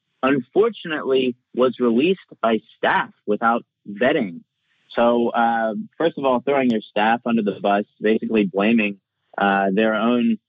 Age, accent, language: 30-49, American, English